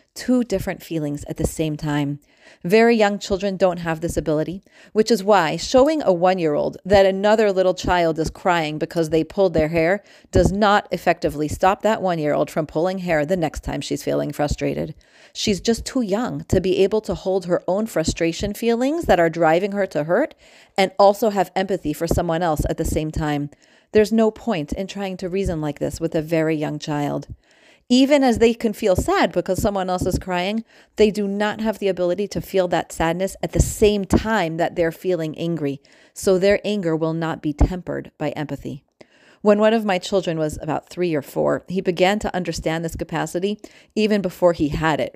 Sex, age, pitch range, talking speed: female, 40-59, 165-205 Hz, 200 wpm